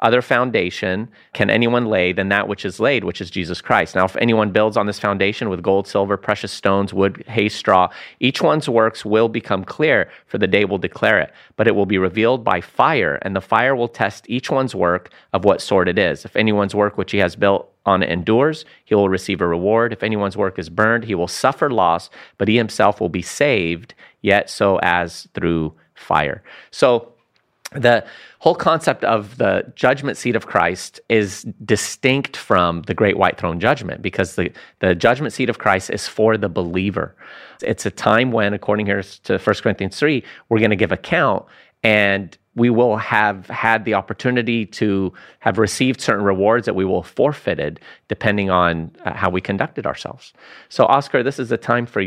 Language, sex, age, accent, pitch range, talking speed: English, male, 30-49, American, 95-115 Hz, 195 wpm